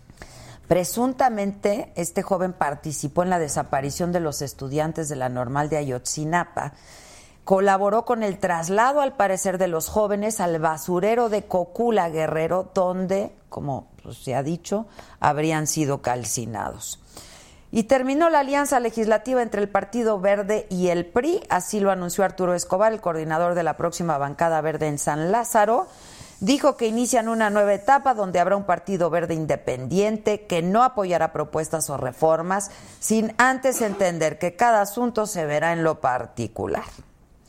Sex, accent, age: female, Mexican, 40-59